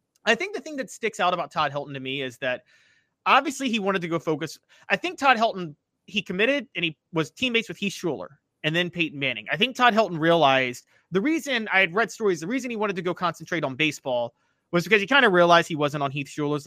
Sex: male